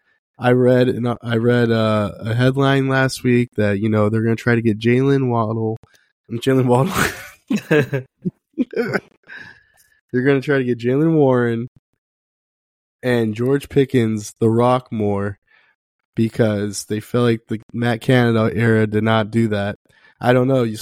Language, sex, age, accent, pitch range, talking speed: English, male, 20-39, American, 110-130 Hz, 140 wpm